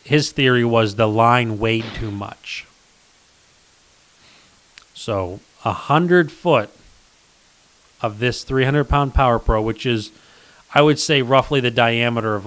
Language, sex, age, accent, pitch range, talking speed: English, male, 30-49, American, 105-125 Hz, 130 wpm